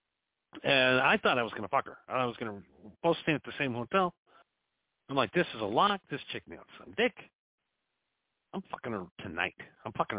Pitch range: 125-170 Hz